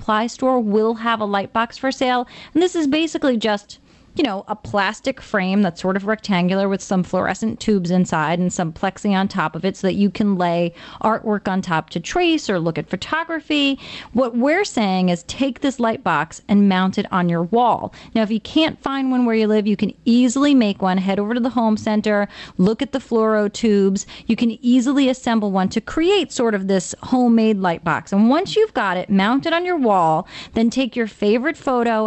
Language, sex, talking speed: English, female, 215 wpm